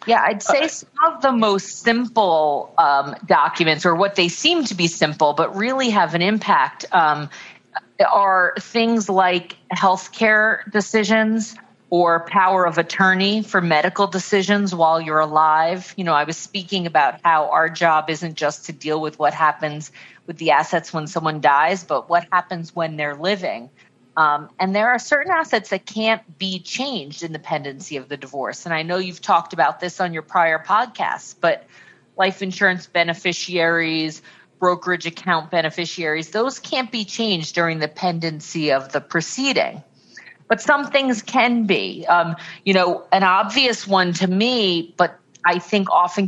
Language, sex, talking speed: English, female, 165 wpm